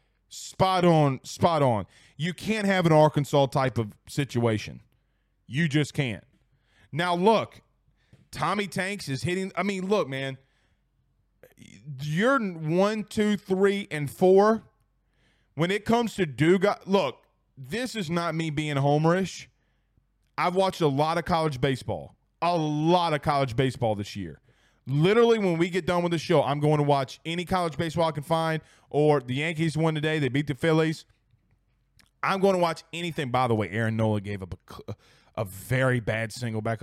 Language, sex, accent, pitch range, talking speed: English, male, American, 120-180 Hz, 170 wpm